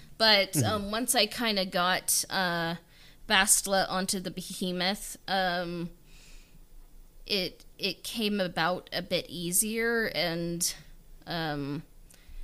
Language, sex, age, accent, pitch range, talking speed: English, female, 20-39, American, 165-200 Hz, 105 wpm